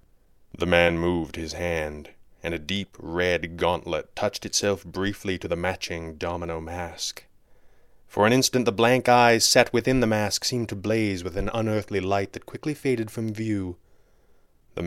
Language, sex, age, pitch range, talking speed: English, male, 30-49, 90-115 Hz, 165 wpm